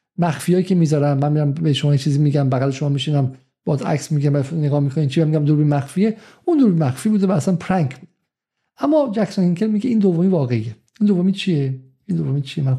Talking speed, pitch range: 200 wpm, 135-175 Hz